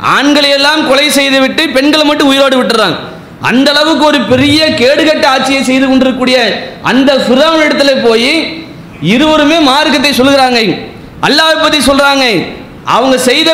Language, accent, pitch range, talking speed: English, Indian, 260-300 Hz, 115 wpm